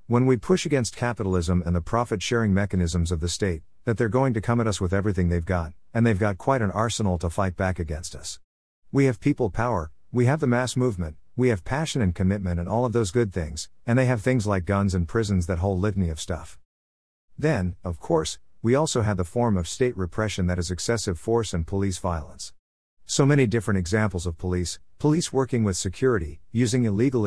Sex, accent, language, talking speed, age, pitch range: male, American, English, 215 wpm, 50-69, 90-115 Hz